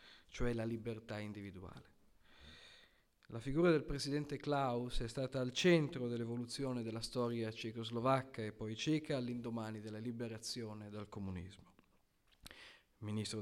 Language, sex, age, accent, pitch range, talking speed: Italian, male, 40-59, native, 115-135 Hz, 120 wpm